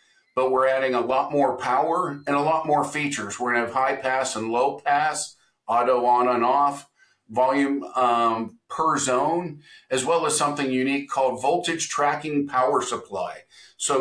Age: 50-69